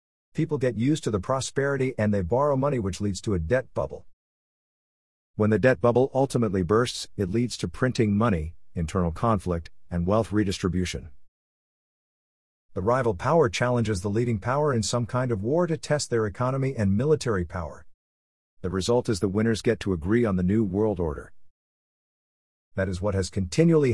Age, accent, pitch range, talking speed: 50-69, American, 90-120 Hz, 175 wpm